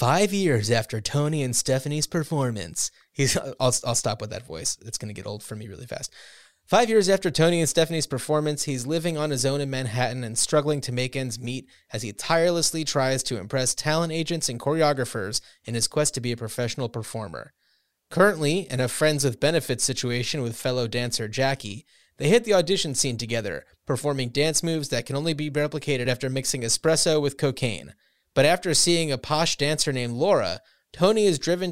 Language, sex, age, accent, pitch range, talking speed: English, male, 30-49, American, 125-160 Hz, 190 wpm